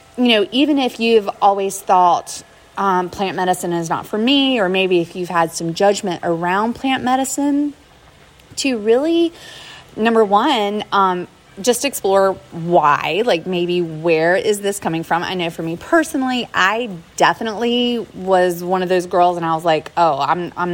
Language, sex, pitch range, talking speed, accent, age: English, female, 170-210 Hz, 170 wpm, American, 30-49